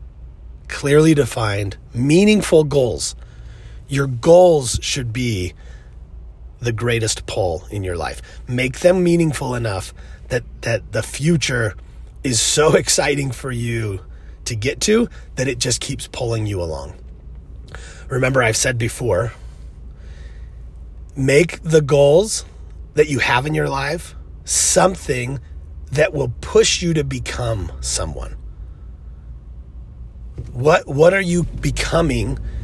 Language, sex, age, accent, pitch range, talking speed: English, male, 30-49, American, 95-145 Hz, 115 wpm